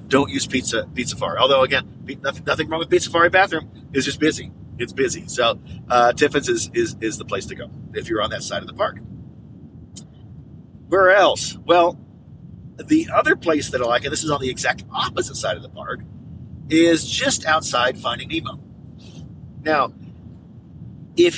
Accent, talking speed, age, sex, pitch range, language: American, 180 wpm, 50-69, male, 125-170 Hz, English